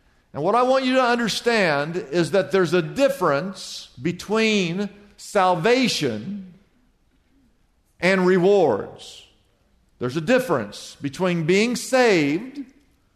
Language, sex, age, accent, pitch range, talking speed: English, male, 50-69, American, 180-225 Hz, 100 wpm